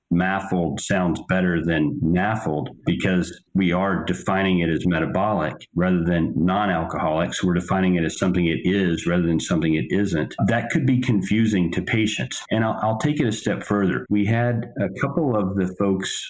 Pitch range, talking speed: 90-115 Hz, 175 wpm